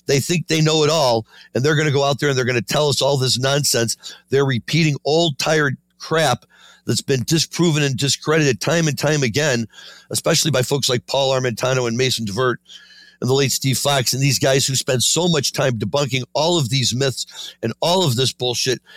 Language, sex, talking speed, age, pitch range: English, male, 215 wpm, 60-79, 115-145 Hz